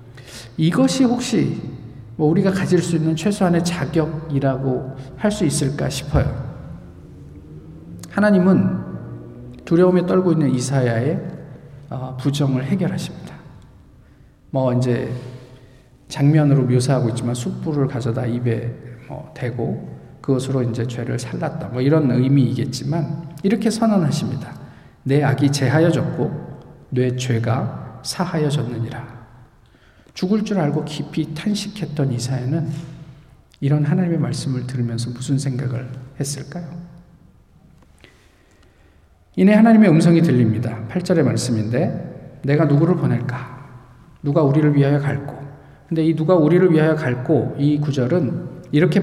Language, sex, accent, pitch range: Korean, male, native, 125-160 Hz